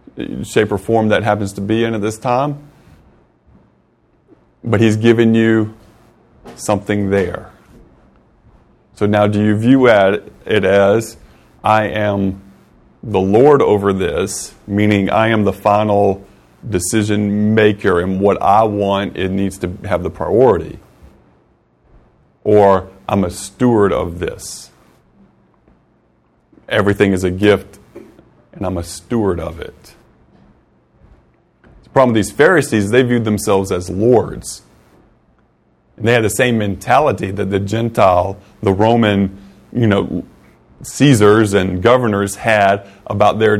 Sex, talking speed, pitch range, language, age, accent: male, 125 wpm, 100-115 Hz, English, 30-49, American